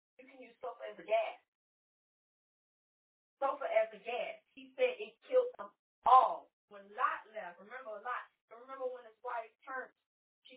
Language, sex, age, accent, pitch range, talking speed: English, female, 30-49, American, 215-275 Hz, 160 wpm